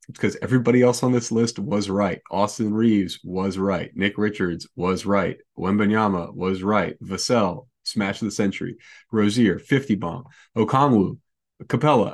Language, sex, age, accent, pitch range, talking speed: English, male, 30-49, American, 100-125 Hz, 150 wpm